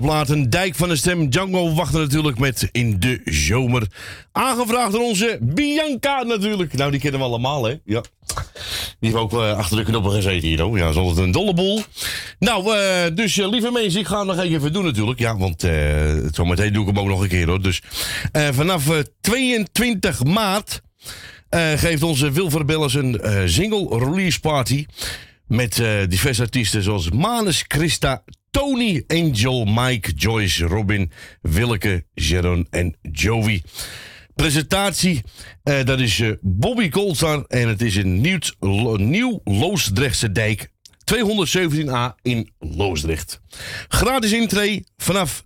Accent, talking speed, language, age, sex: Dutch, 155 wpm, Dutch, 40-59, male